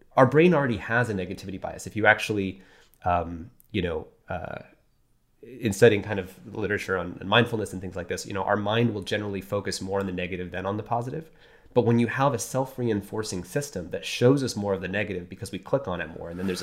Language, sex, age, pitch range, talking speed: English, male, 30-49, 95-125 Hz, 225 wpm